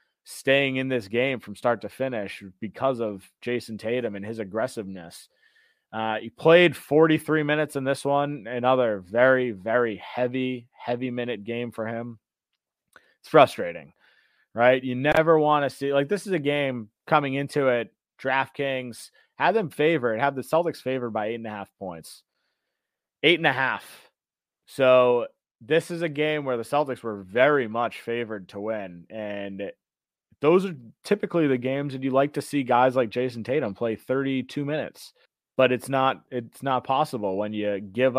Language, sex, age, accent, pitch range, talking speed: English, male, 20-39, American, 110-140 Hz, 170 wpm